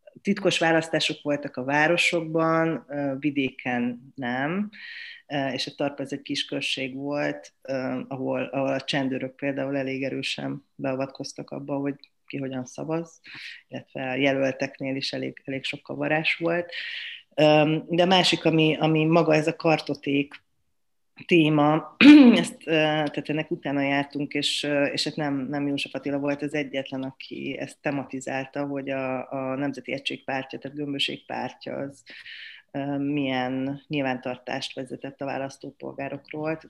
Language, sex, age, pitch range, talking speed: Hungarian, female, 30-49, 135-155 Hz, 125 wpm